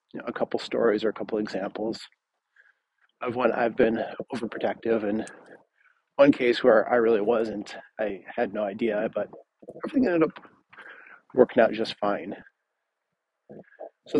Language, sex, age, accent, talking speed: English, male, 40-59, American, 135 wpm